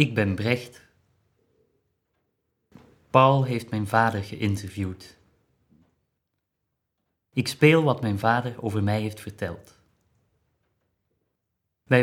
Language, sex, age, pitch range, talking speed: Dutch, male, 30-49, 100-120 Hz, 90 wpm